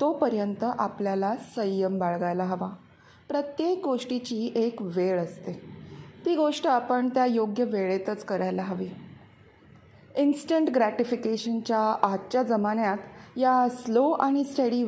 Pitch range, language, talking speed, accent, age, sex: 205-255 Hz, Marathi, 95 wpm, native, 30-49, female